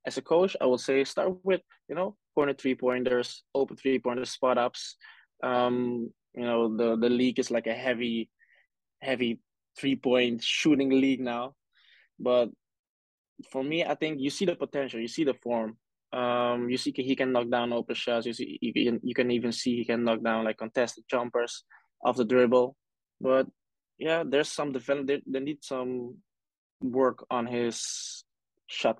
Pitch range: 120-135 Hz